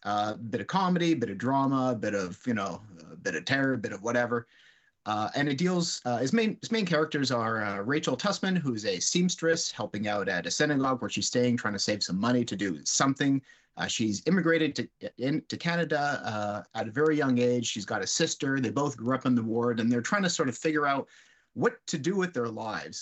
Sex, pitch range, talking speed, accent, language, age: male, 110-145 Hz, 245 wpm, American, English, 30-49